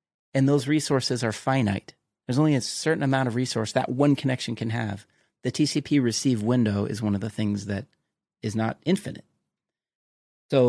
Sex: male